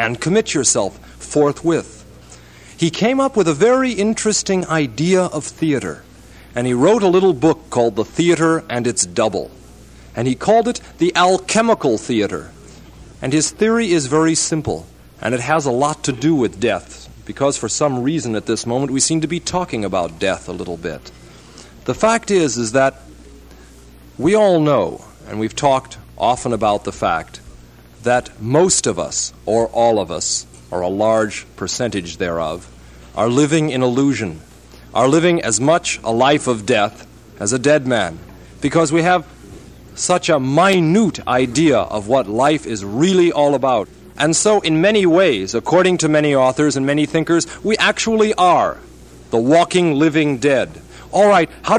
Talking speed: 170 wpm